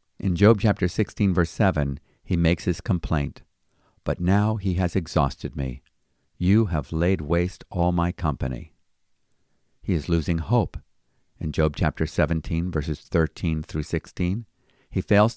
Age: 50-69